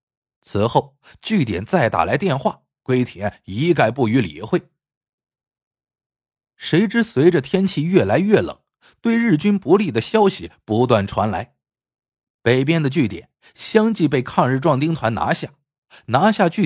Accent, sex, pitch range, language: native, male, 115-175 Hz, Chinese